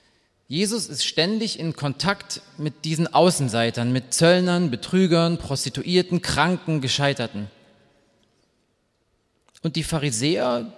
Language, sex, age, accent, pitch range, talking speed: German, male, 30-49, German, 125-180 Hz, 95 wpm